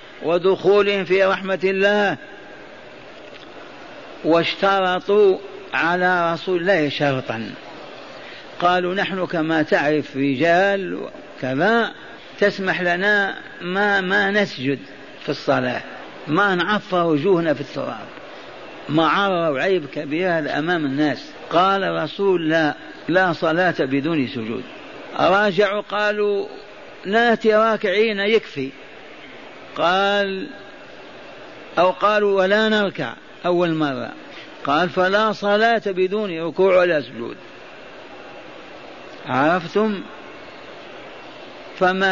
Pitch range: 160-200 Hz